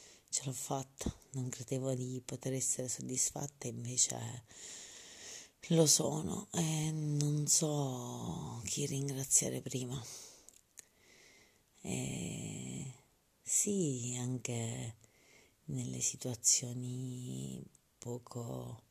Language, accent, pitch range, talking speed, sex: Italian, native, 120-140 Hz, 75 wpm, female